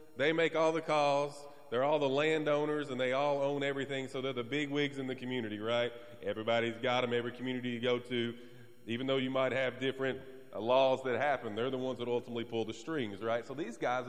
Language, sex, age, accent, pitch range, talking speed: English, male, 30-49, American, 115-155 Hz, 225 wpm